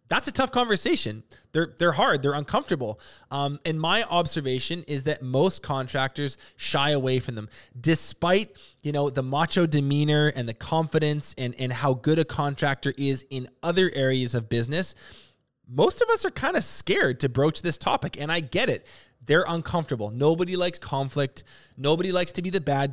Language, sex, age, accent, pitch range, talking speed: English, male, 20-39, American, 130-165 Hz, 180 wpm